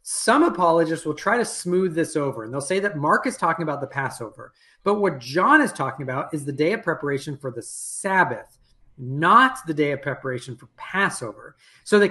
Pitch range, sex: 140-195 Hz, male